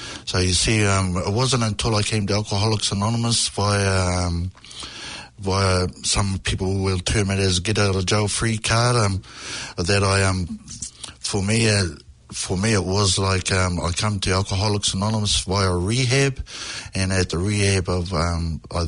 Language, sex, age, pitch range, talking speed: English, male, 60-79, 90-110 Hz, 170 wpm